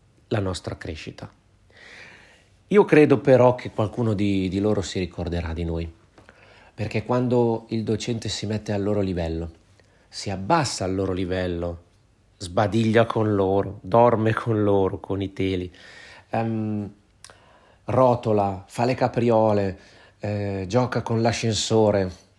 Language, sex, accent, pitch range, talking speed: Italian, male, native, 95-115 Hz, 125 wpm